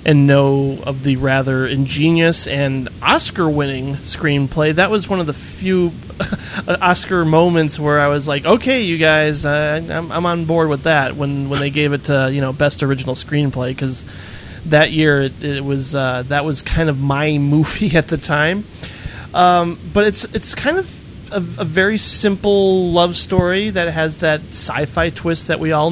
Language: English